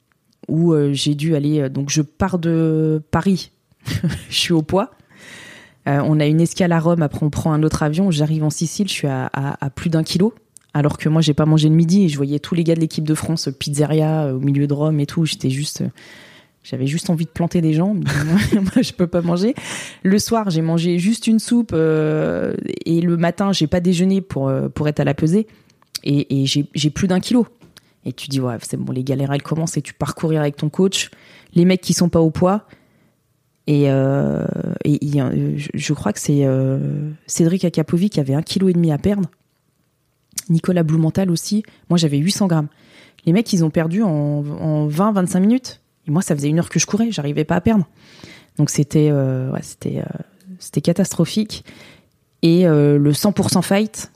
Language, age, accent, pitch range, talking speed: French, 20-39, French, 145-180 Hz, 215 wpm